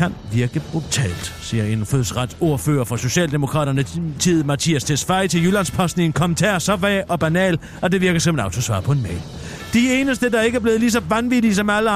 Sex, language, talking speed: male, Danish, 200 wpm